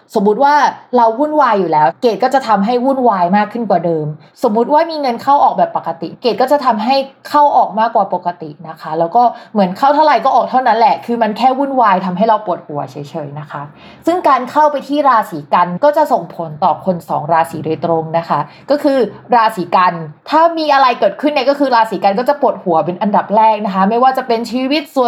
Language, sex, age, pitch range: Thai, female, 20-39, 180-255 Hz